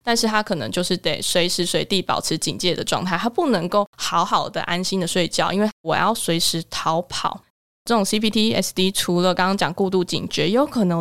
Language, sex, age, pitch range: Chinese, female, 20-39, 175-200 Hz